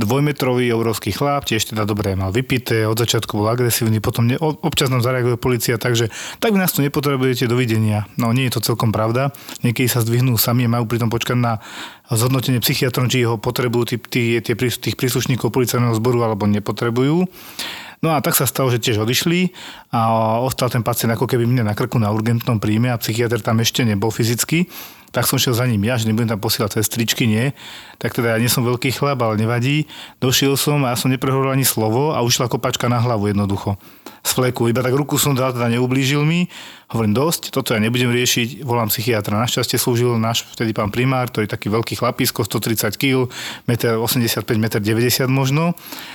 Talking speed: 200 wpm